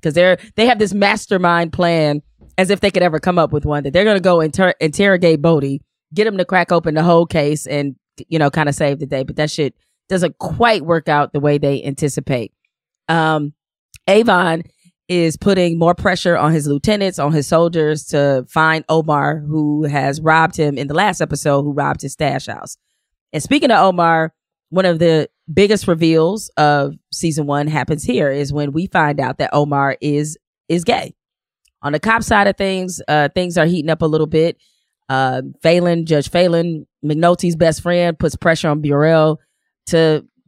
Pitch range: 150-175 Hz